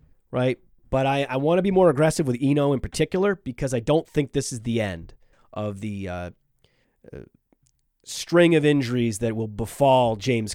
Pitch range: 125-175 Hz